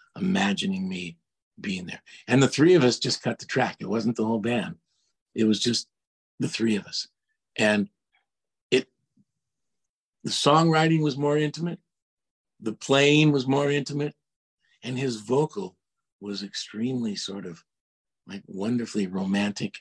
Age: 50-69